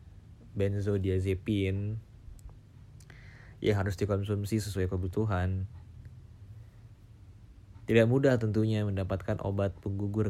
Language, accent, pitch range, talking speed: Indonesian, native, 95-105 Hz, 70 wpm